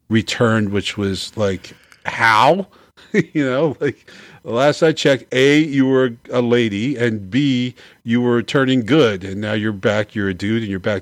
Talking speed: 175 wpm